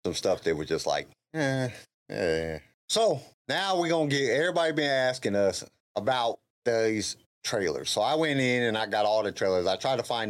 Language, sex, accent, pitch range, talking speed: English, male, American, 90-130 Hz, 200 wpm